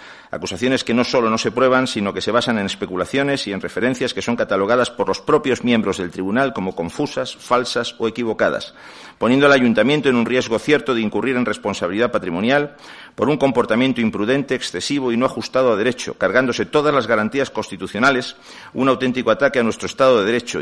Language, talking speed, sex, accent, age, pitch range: Spanish, 190 wpm, male, Spanish, 50-69, 110-135 Hz